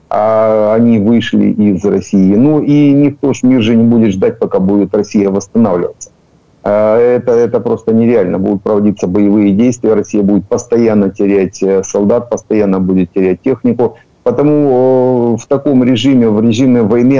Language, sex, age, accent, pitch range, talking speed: Ukrainian, male, 50-69, native, 105-120 Hz, 145 wpm